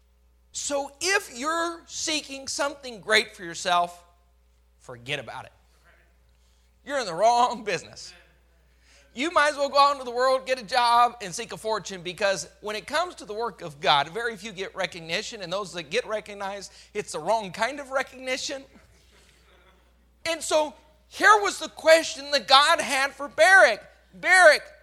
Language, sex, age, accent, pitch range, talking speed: English, male, 40-59, American, 205-300 Hz, 165 wpm